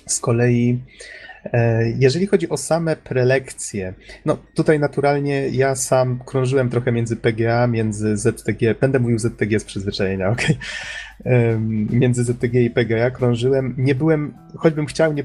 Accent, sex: native, male